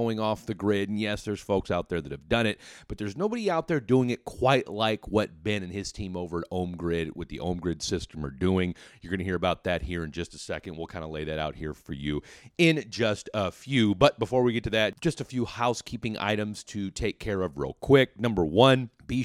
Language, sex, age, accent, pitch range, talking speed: English, male, 30-49, American, 85-110 Hz, 260 wpm